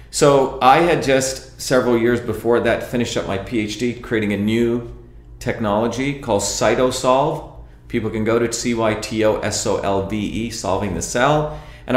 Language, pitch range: English, 100-125 Hz